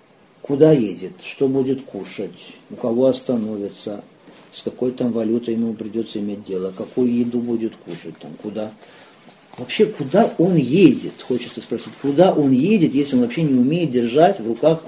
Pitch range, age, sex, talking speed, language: 120-165 Hz, 50-69, male, 155 wpm, Russian